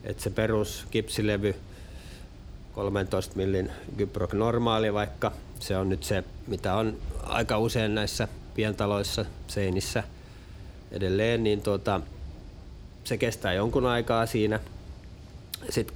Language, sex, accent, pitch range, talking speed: Finnish, male, native, 95-115 Hz, 105 wpm